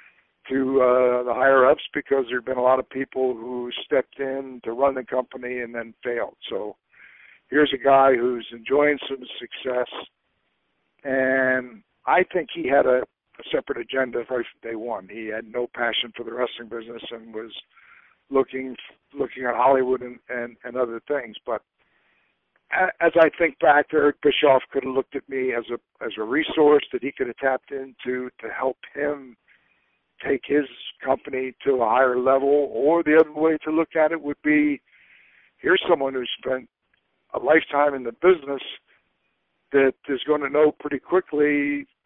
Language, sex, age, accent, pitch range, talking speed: English, male, 60-79, American, 125-145 Hz, 170 wpm